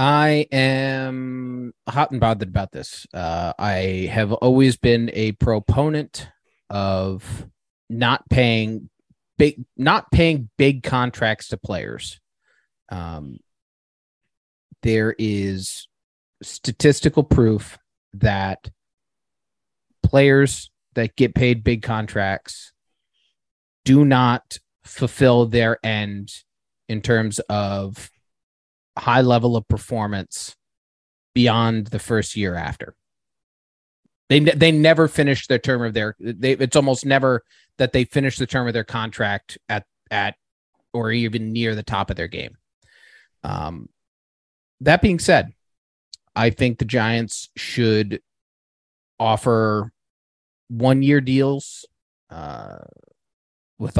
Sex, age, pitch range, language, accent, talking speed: male, 30-49, 100-130 Hz, English, American, 110 wpm